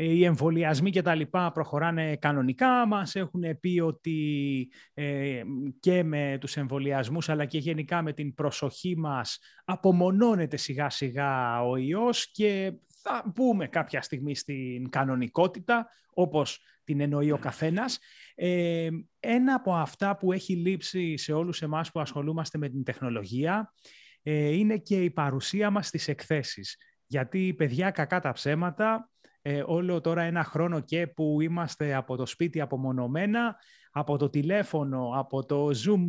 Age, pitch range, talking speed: 30-49, 140-180 Hz, 140 wpm